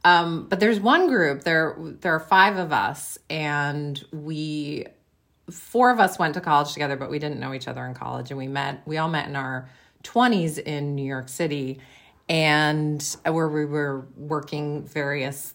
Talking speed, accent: 180 wpm, American